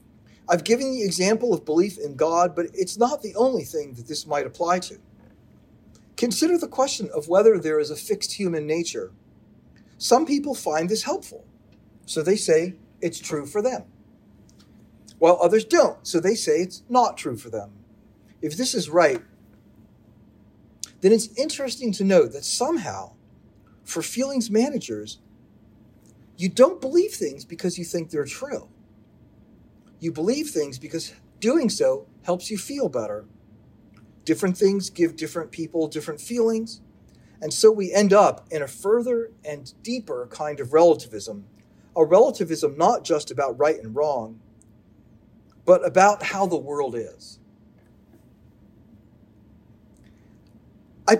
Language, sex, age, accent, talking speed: English, male, 40-59, American, 140 wpm